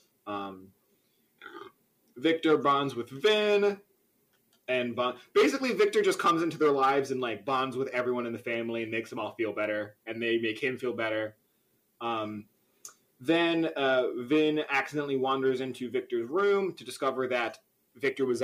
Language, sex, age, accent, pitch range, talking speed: English, male, 20-39, American, 115-165 Hz, 155 wpm